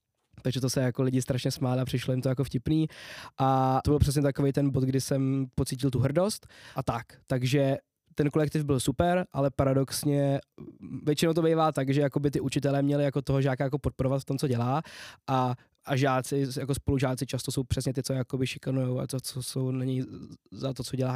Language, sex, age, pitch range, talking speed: Czech, male, 20-39, 125-140 Hz, 210 wpm